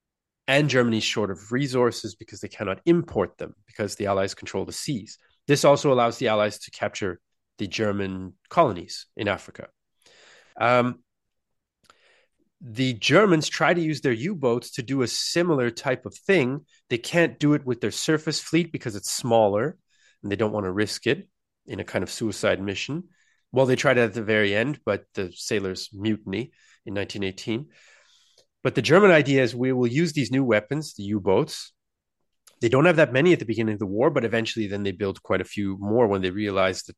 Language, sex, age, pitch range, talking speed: English, male, 30-49, 105-145 Hz, 190 wpm